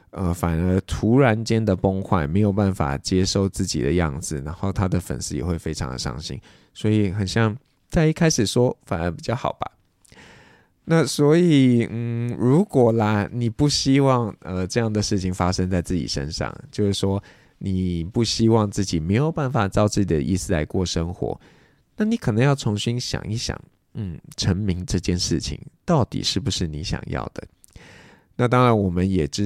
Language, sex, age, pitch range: Chinese, male, 20-39, 90-115 Hz